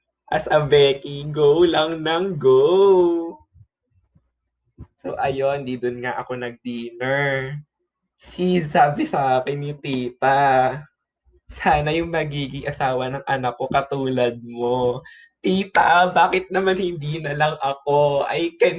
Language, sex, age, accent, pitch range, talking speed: Filipino, male, 20-39, native, 130-160 Hz, 120 wpm